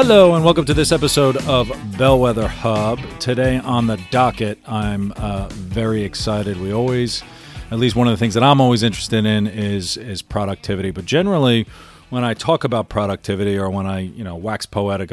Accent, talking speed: American, 185 wpm